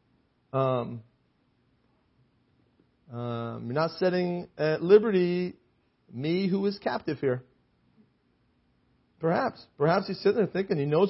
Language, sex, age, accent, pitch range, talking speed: English, male, 40-59, American, 125-165 Hz, 110 wpm